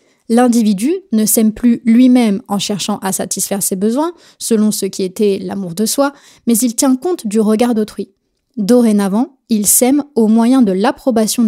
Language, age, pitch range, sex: French, 20-39, 205-250 Hz, female